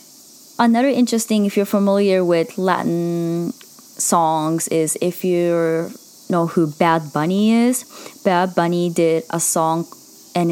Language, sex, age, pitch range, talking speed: English, female, 20-39, 170-210 Hz, 125 wpm